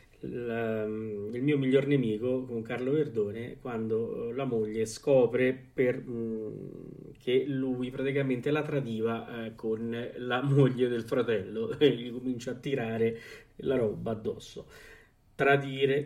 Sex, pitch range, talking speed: male, 115-140 Hz, 115 wpm